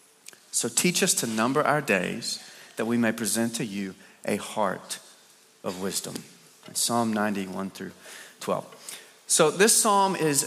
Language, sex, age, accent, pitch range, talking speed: English, male, 30-49, American, 115-155 Hz, 150 wpm